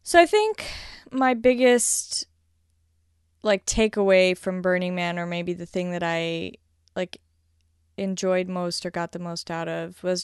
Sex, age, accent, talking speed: female, 20-39, American, 150 wpm